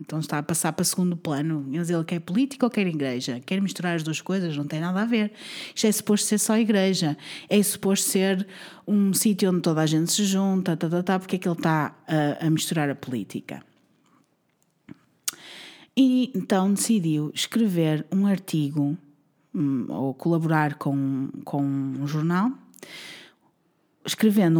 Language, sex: Portuguese, female